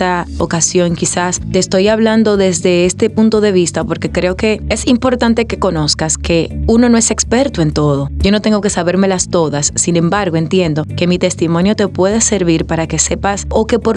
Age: 30-49